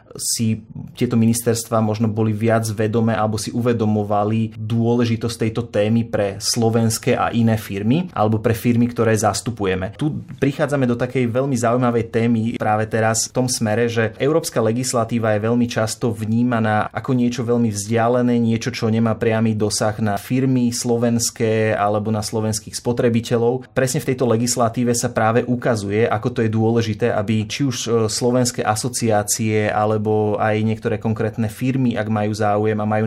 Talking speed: 155 wpm